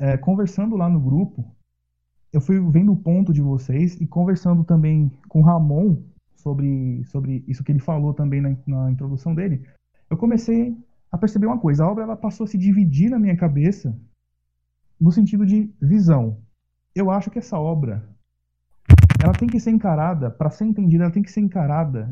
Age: 20-39